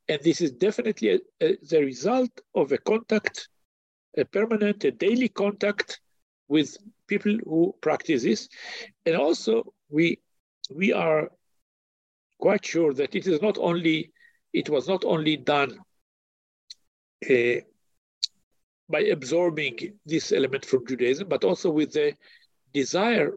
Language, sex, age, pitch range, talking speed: English, male, 50-69, 140-215 Hz, 130 wpm